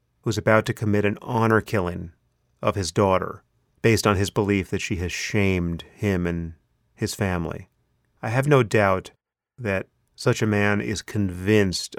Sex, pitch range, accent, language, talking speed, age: male, 95-115 Hz, American, English, 160 wpm, 30-49